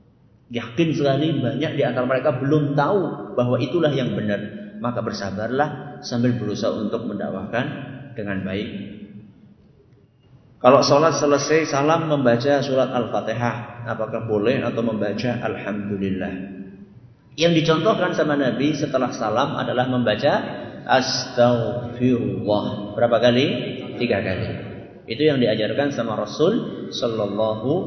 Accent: native